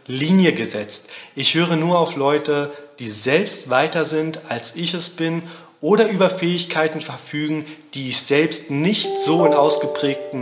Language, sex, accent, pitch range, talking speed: German, male, German, 135-165 Hz, 150 wpm